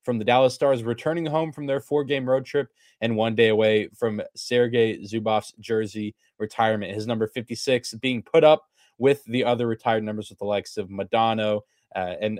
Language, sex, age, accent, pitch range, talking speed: English, male, 20-39, American, 110-130 Hz, 185 wpm